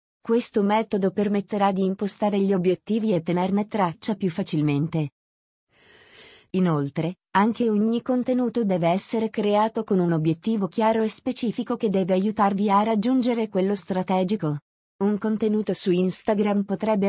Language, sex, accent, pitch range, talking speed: Italian, female, native, 180-220 Hz, 130 wpm